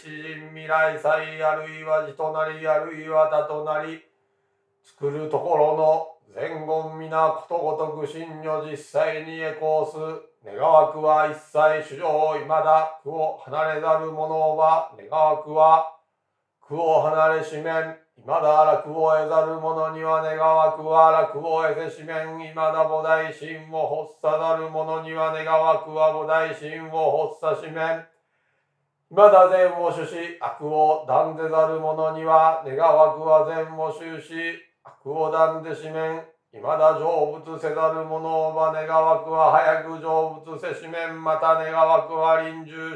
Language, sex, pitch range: Japanese, male, 155-160 Hz